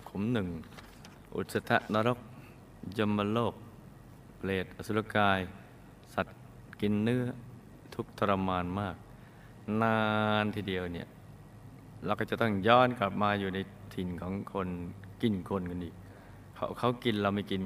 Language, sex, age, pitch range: Thai, male, 20-39, 95-115 Hz